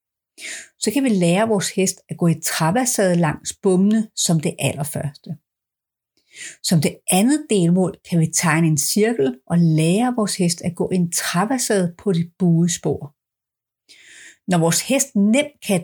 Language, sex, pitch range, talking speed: Danish, female, 170-225 Hz, 160 wpm